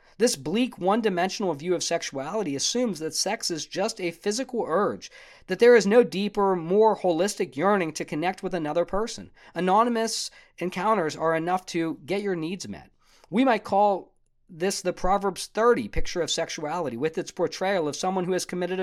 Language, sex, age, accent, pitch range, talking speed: English, male, 40-59, American, 160-210 Hz, 170 wpm